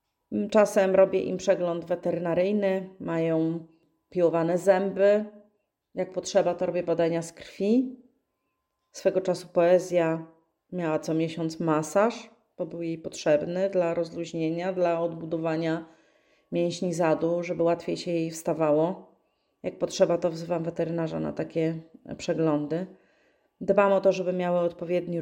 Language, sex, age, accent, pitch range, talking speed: Polish, female, 30-49, native, 165-185 Hz, 120 wpm